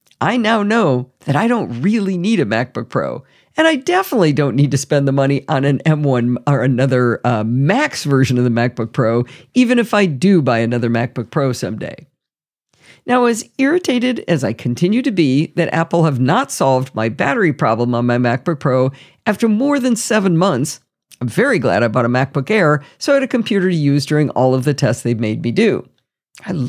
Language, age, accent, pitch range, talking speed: English, 50-69, American, 130-210 Hz, 205 wpm